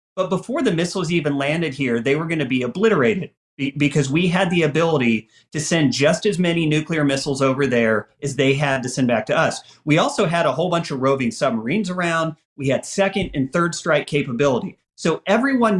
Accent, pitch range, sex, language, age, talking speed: American, 135-190 Hz, male, English, 40-59, 200 wpm